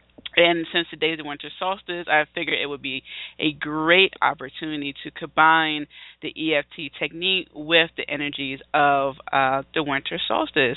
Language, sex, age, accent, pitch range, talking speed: English, female, 40-59, American, 150-210 Hz, 160 wpm